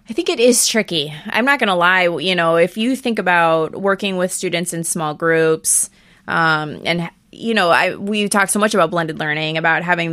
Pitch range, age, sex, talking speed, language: 165-210 Hz, 20-39, female, 215 wpm, English